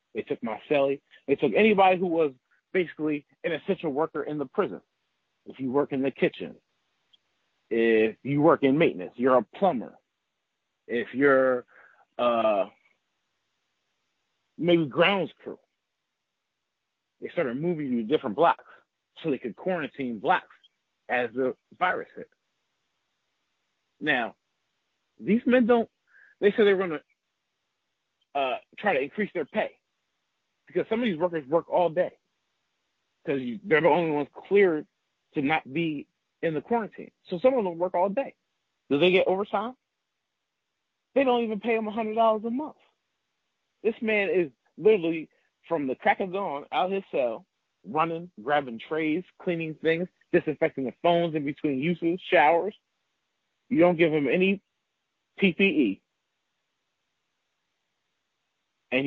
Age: 40-59